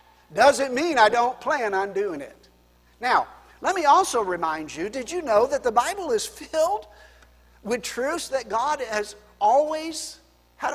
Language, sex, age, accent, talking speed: English, male, 50-69, American, 160 wpm